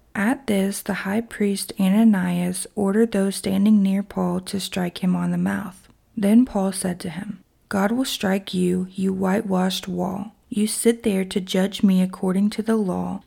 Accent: American